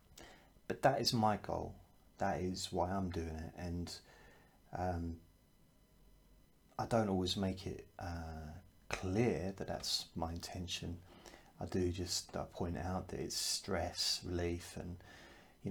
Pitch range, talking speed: 85-105 Hz, 135 wpm